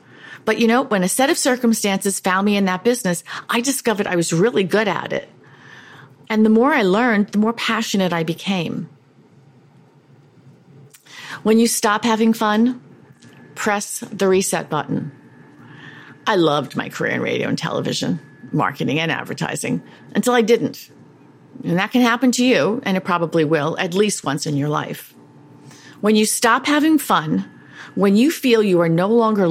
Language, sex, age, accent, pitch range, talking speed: English, female, 40-59, American, 170-225 Hz, 165 wpm